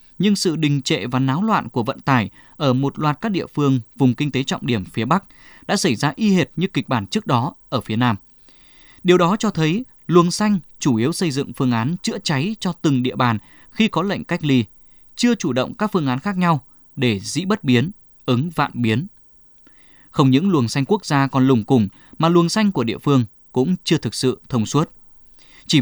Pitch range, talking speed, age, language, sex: 125-180 Hz, 225 wpm, 20-39, Vietnamese, male